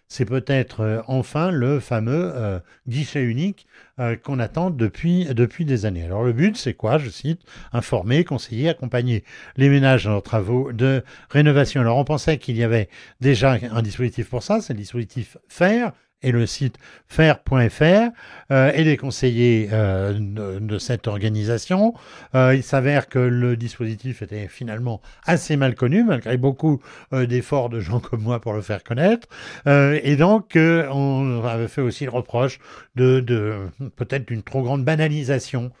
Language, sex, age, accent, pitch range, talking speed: French, male, 60-79, French, 115-140 Hz, 170 wpm